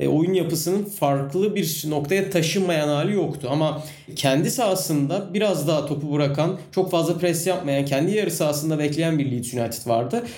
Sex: male